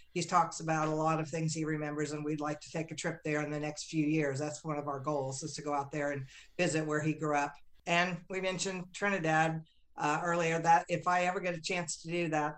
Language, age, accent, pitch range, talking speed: English, 50-69, American, 155-180 Hz, 260 wpm